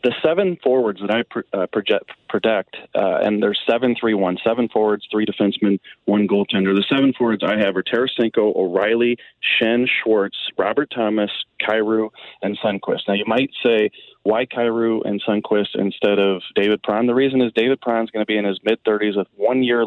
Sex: male